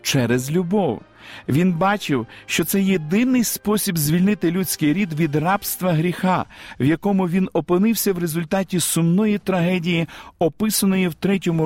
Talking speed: 130 wpm